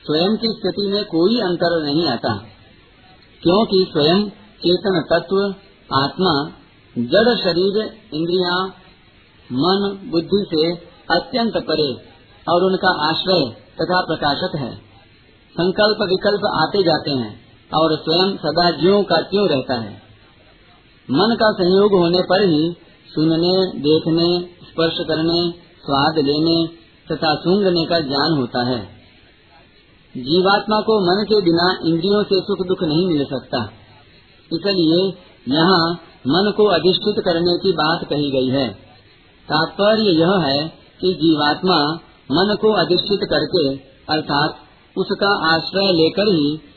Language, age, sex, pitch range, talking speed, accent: Hindi, 50-69, male, 150-190 Hz, 125 wpm, native